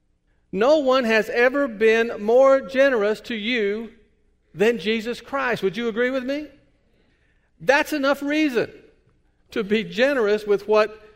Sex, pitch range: male, 170-225 Hz